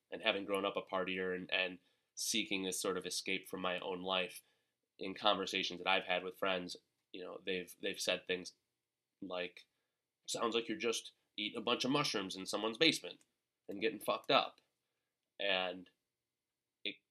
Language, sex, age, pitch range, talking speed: English, male, 20-39, 90-100 Hz, 170 wpm